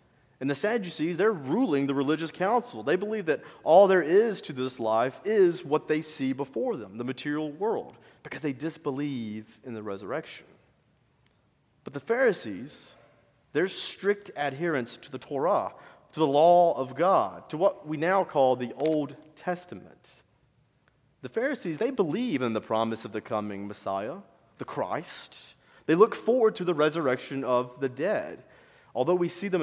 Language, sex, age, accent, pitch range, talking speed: English, male, 30-49, American, 120-170 Hz, 160 wpm